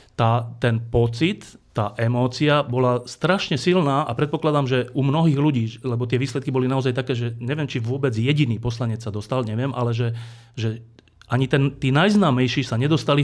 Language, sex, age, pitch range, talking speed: Slovak, male, 30-49, 120-150 Hz, 170 wpm